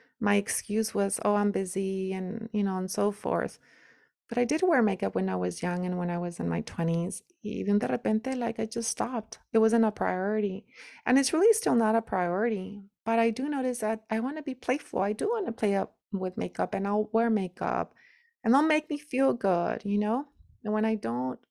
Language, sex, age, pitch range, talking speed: English, female, 30-49, 200-240 Hz, 225 wpm